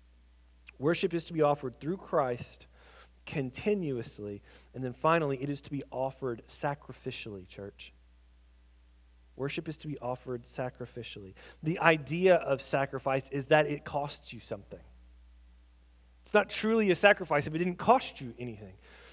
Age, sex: 40-59, male